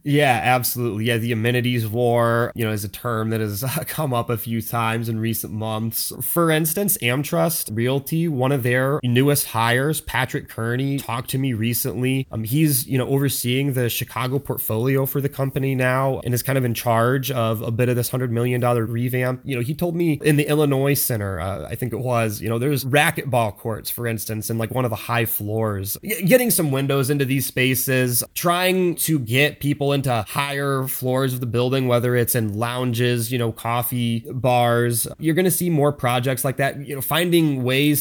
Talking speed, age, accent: 200 wpm, 20-39, American